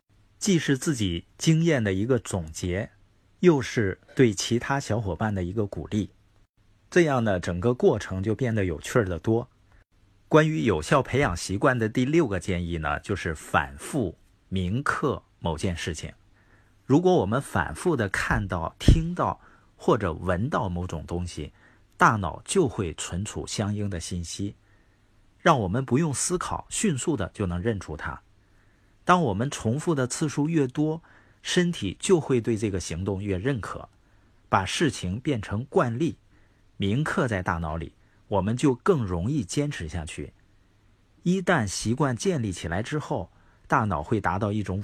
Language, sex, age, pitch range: Chinese, male, 50-69, 95-130 Hz